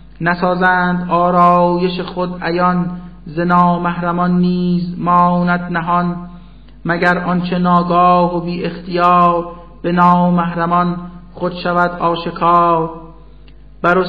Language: Persian